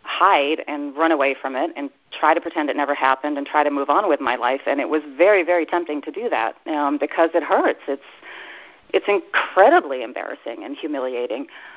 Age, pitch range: 40-59, 140-170 Hz